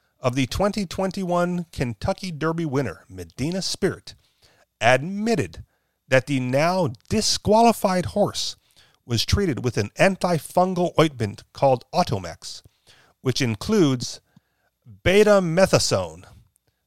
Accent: American